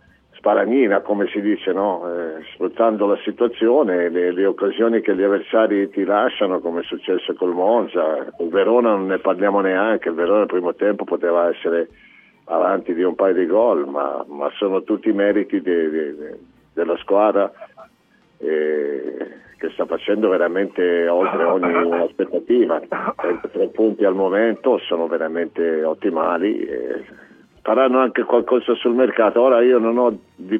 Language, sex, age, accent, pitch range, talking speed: Italian, male, 50-69, native, 95-120 Hz, 155 wpm